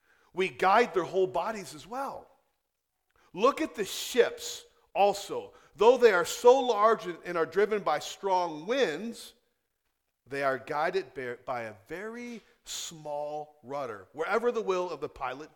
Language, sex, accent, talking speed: English, male, American, 145 wpm